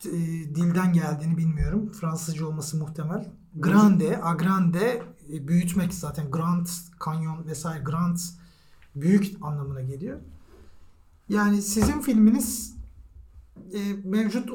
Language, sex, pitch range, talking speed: Turkish, male, 160-210 Hz, 85 wpm